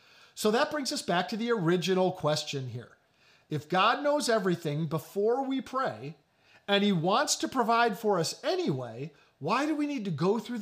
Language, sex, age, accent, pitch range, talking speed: English, male, 40-59, American, 145-210 Hz, 180 wpm